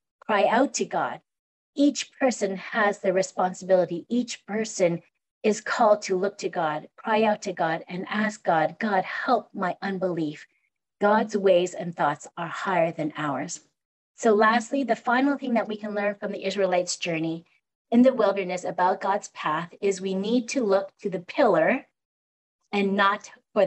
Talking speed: 165 wpm